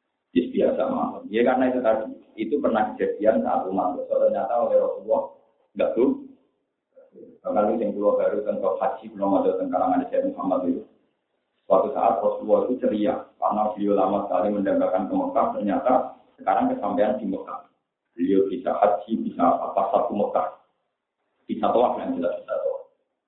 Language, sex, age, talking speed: Indonesian, male, 50-69, 160 wpm